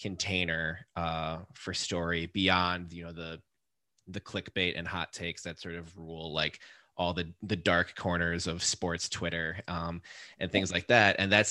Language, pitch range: English, 85-100 Hz